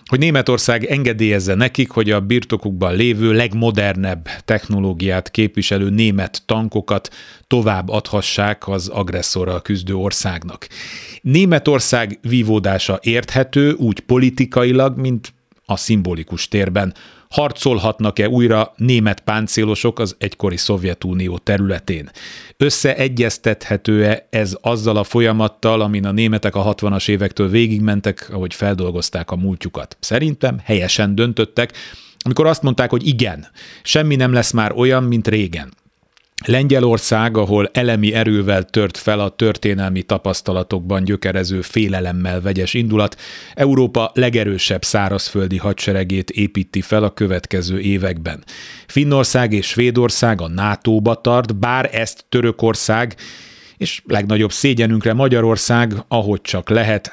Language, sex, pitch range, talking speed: Hungarian, male, 100-120 Hz, 110 wpm